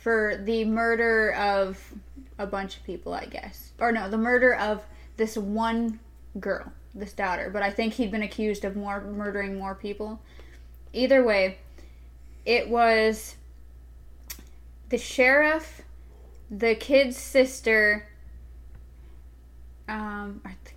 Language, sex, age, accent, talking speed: English, female, 10-29, American, 125 wpm